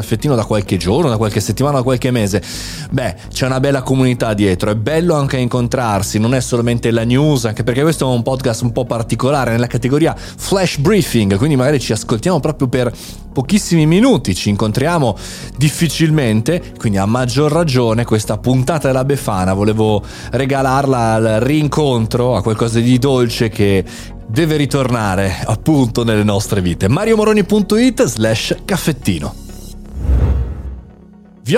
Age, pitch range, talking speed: 30-49, 110-165 Hz, 145 wpm